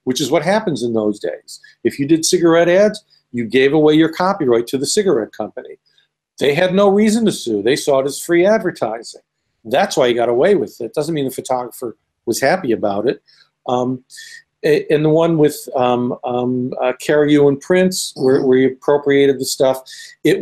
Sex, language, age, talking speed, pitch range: male, English, 50-69, 195 wpm, 130-185 Hz